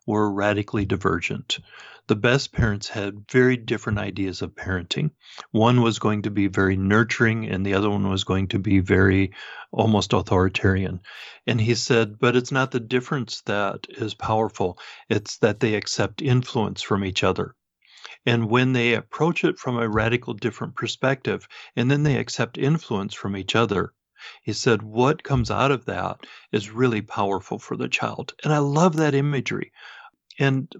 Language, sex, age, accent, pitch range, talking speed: English, male, 40-59, American, 105-135 Hz, 170 wpm